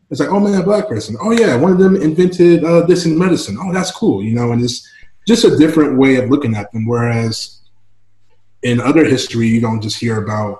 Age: 20-39